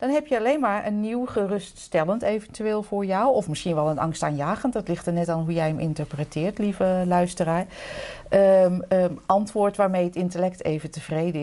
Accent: Dutch